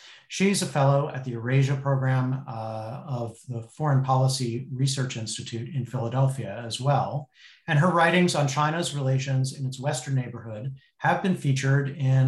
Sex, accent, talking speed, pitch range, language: male, American, 155 wpm, 125-145 Hz, English